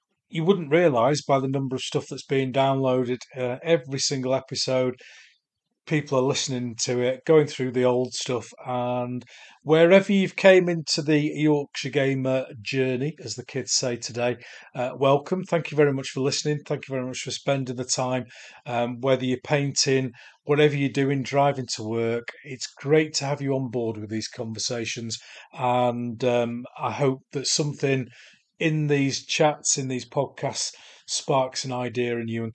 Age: 40-59